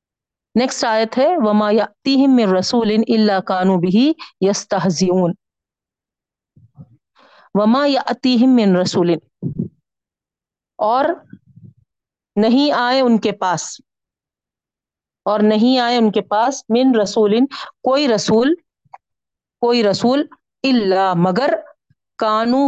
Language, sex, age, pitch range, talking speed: Urdu, female, 40-59, 200-245 Hz, 100 wpm